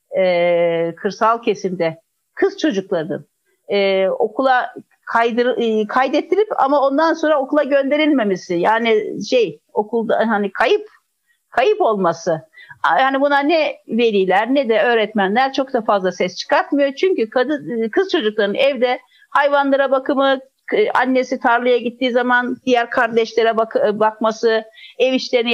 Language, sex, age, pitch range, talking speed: Turkish, female, 50-69, 215-305 Hz, 120 wpm